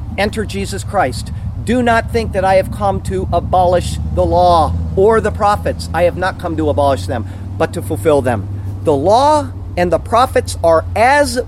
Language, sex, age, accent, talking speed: English, male, 40-59, American, 185 wpm